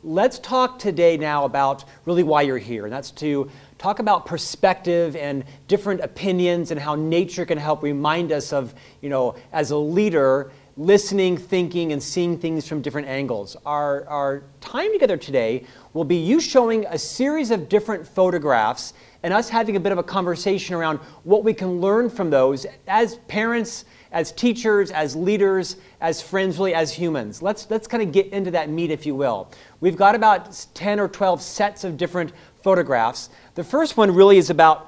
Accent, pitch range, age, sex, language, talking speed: American, 150-200 Hz, 40-59, male, English, 180 wpm